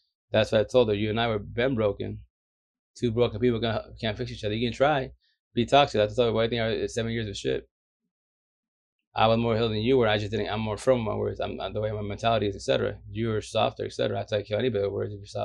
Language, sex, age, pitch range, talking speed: English, male, 20-39, 105-120 Hz, 275 wpm